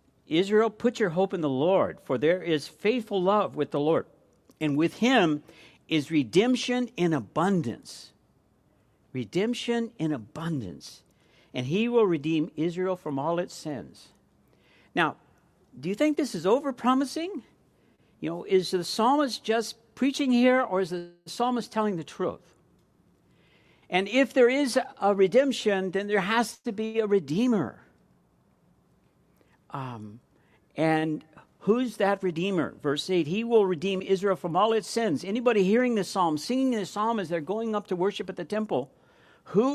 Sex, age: male, 60-79